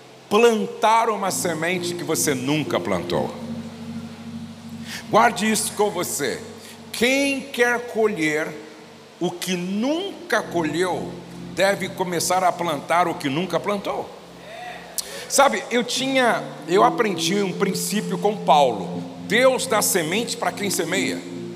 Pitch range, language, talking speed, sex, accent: 175-230 Hz, Portuguese, 115 wpm, male, Brazilian